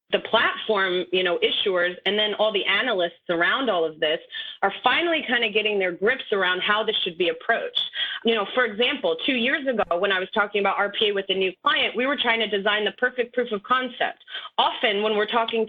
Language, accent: English, American